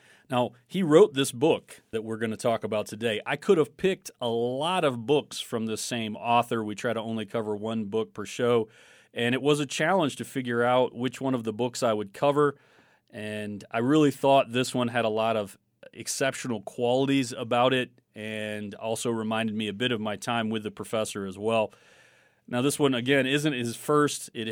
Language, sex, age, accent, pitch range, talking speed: English, male, 30-49, American, 105-125 Hz, 210 wpm